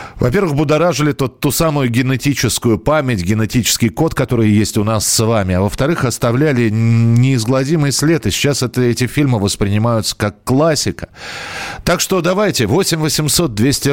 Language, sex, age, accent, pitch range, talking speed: Russian, male, 40-59, native, 100-135 Hz, 135 wpm